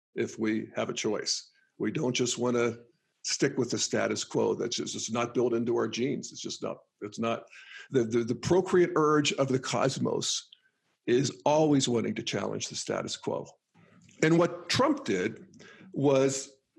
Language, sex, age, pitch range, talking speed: English, male, 50-69, 125-175 Hz, 175 wpm